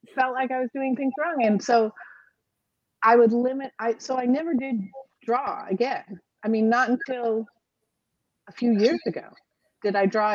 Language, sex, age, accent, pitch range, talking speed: English, female, 30-49, American, 190-240 Hz, 170 wpm